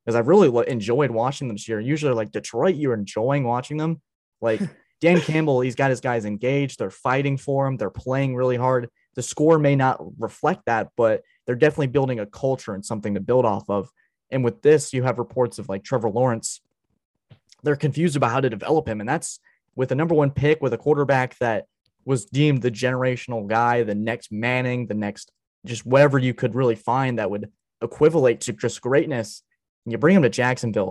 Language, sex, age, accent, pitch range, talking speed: English, male, 20-39, American, 115-140 Hz, 205 wpm